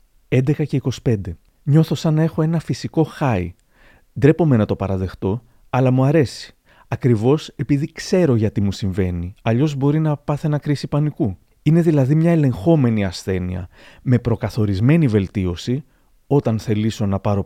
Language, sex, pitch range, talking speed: Greek, male, 105-150 Hz, 145 wpm